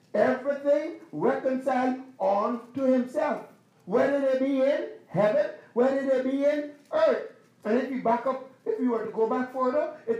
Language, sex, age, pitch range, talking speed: English, male, 50-69, 245-330 Hz, 165 wpm